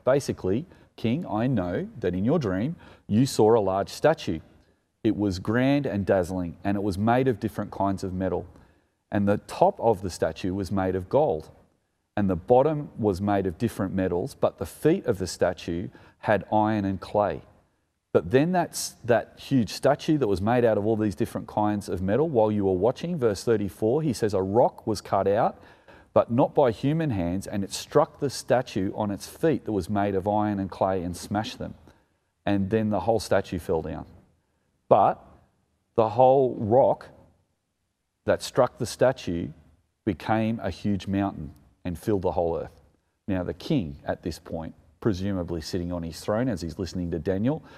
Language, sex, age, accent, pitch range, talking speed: English, male, 30-49, Australian, 90-110 Hz, 185 wpm